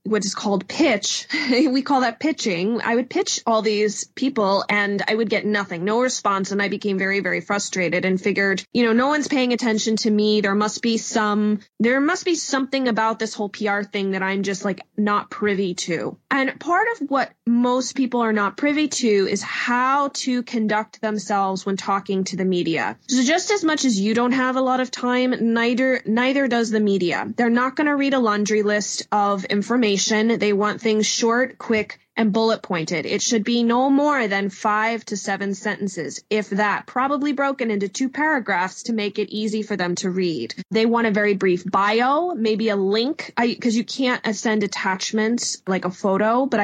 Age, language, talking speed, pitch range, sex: 20-39, English, 200 wpm, 200-255 Hz, female